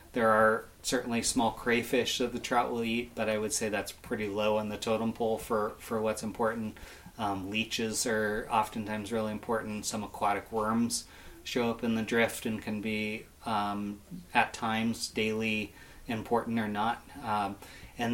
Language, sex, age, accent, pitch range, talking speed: English, male, 30-49, American, 105-120 Hz, 170 wpm